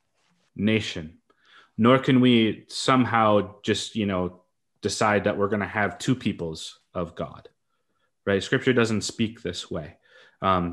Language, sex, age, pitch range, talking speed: English, male, 20-39, 90-110 Hz, 140 wpm